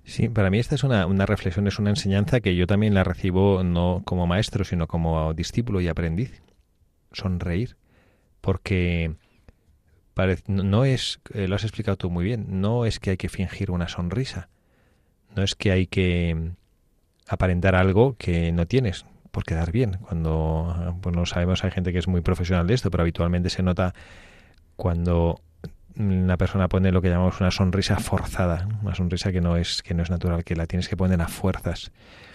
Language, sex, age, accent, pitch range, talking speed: Spanish, male, 30-49, Spanish, 90-100 Hz, 185 wpm